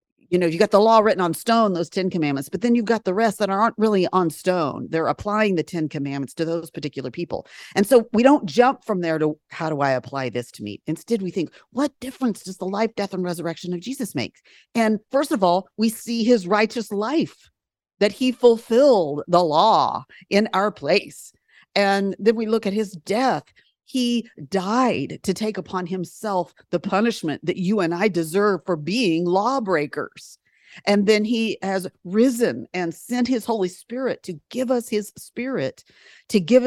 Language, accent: English, American